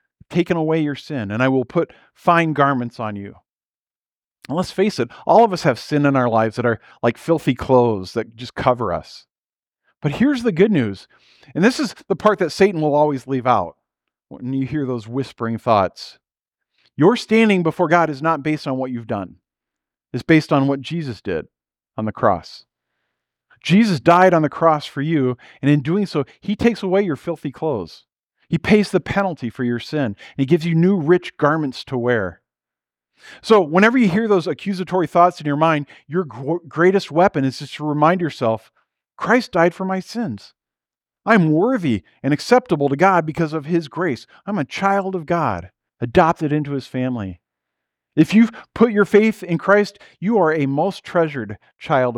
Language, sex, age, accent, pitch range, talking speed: English, male, 40-59, American, 125-180 Hz, 185 wpm